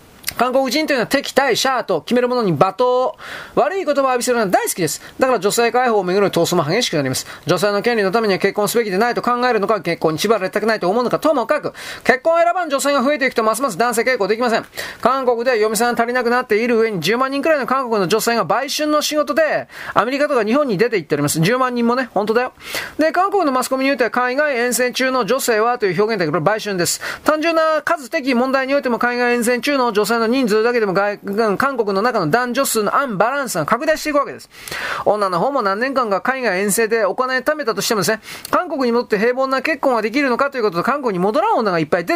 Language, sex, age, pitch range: Japanese, male, 30-49, 215-280 Hz